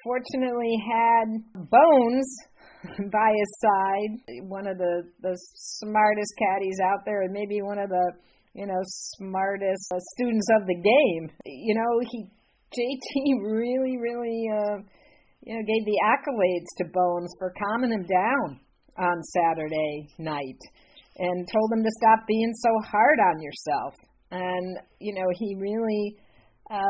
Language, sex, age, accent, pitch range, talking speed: English, female, 50-69, American, 180-230 Hz, 140 wpm